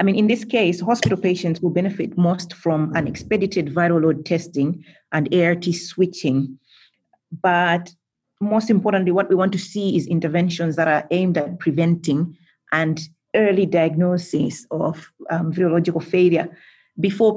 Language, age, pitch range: English, 30-49, 165-185 Hz